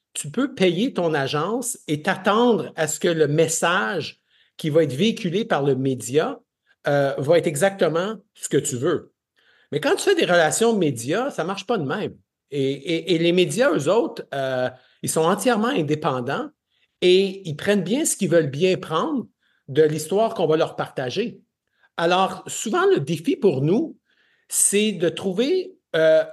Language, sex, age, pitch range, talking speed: French, male, 50-69, 155-220 Hz, 175 wpm